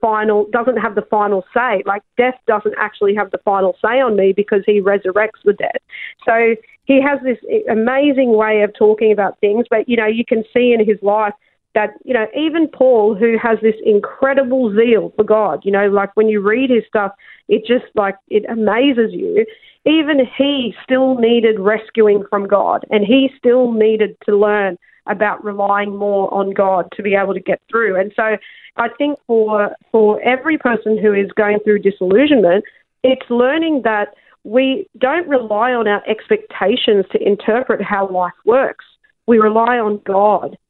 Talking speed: 175 wpm